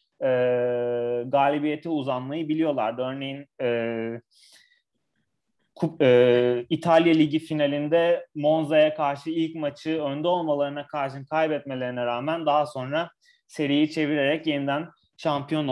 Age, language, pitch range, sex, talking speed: 30-49, Turkish, 135-165 Hz, male, 100 wpm